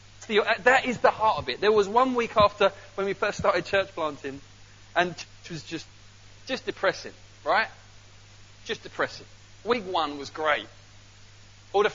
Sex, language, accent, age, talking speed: male, English, British, 30-49, 160 wpm